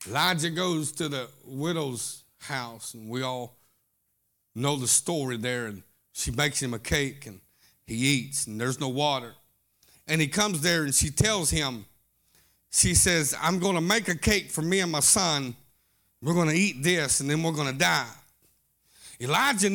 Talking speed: 180 wpm